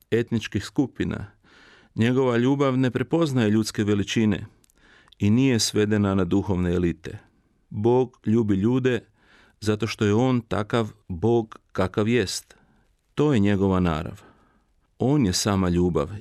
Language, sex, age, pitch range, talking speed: Croatian, male, 40-59, 105-130 Hz, 120 wpm